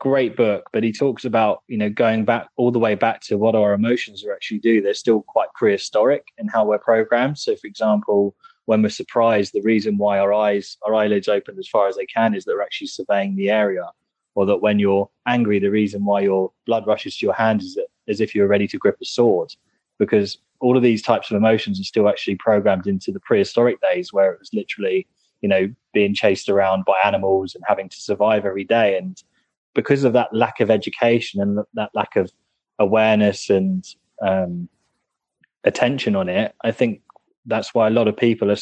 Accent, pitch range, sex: British, 100-130 Hz, male